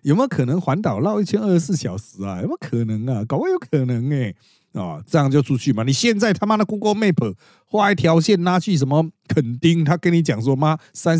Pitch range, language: 105-155 Hz, Chinese